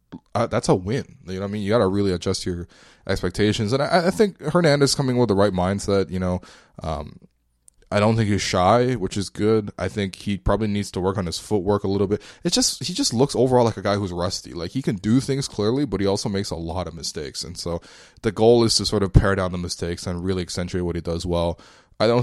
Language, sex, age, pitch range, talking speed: English, male, 20-39, 90-110 Hz, 260 wpm